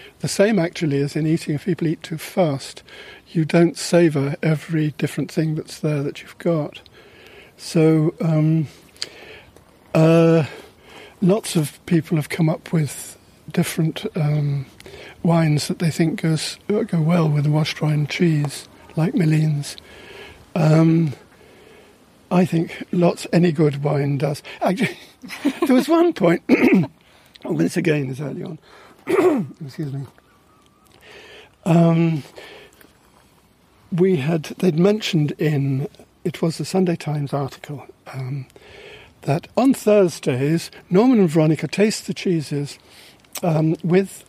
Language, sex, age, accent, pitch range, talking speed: German, male, 50-69, British, 150-185 Hz, 130 wpm